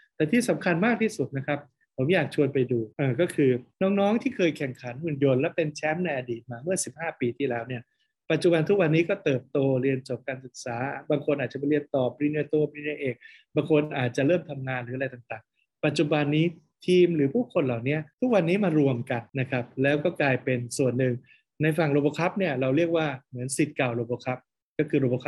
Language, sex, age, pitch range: Thai, male, 20-39, 130-160 Hz